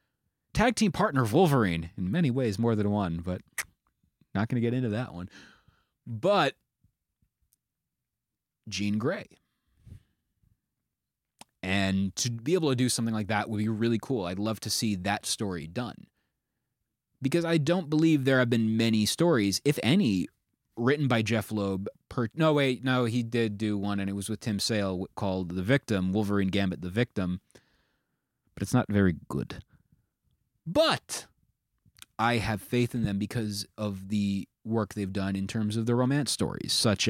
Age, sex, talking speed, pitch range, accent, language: 30-49, male, 160 wpm, 105-150 Hz, American, English